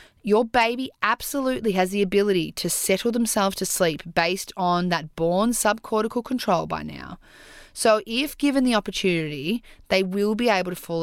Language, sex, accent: English, female, Australian